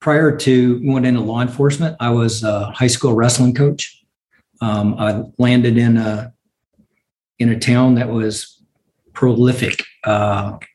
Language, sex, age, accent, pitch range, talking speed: English, male, 50-69, American, 110-125 Hz, 140 wpm